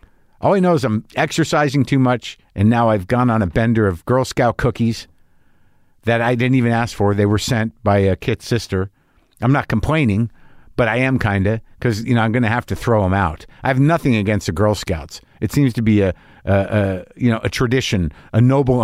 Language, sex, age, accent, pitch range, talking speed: English, male, 50-69, American, 105-140 Hz, 225 wpm